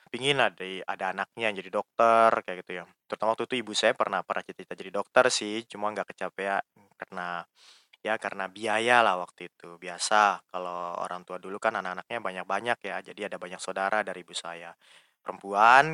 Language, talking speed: Indonesian, 185 wpm